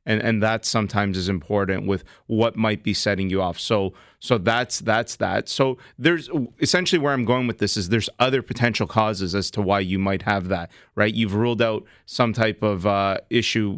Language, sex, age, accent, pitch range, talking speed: English, male, 30-49, American, 100-115 Hz, 205 wpm